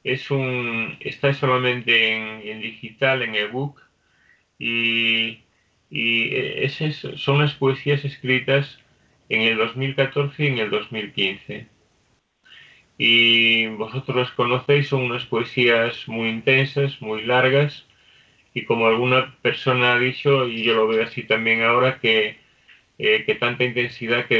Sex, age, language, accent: male, 30-49, Spanish, Spanish